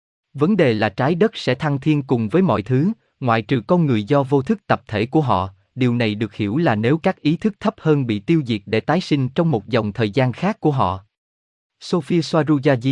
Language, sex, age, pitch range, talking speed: Vietnamese, male, 20-39, 110-160 Hz, 230 wpm